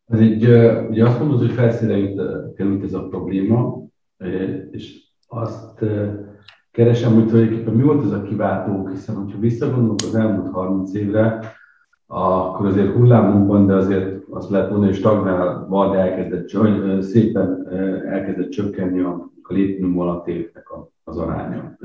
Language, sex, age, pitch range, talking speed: Hungarian, male, 50-69, 90-110 Hz, 145 wpm